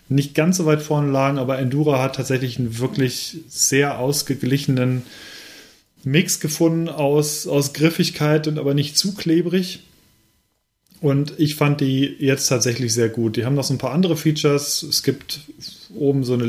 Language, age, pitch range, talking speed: German, 30-49, 125-150 Hz, 165 wpm